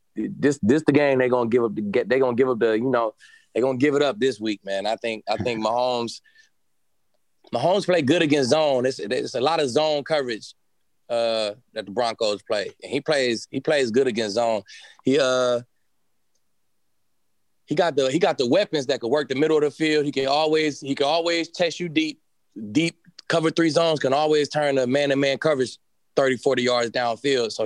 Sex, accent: male, American